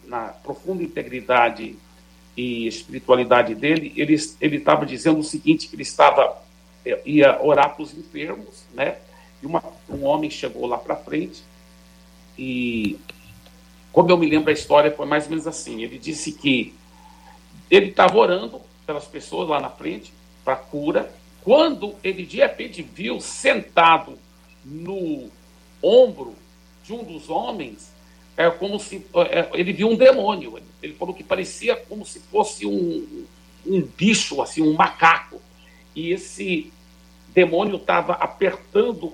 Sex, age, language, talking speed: male, 60-79, Portuguese, 140 wpm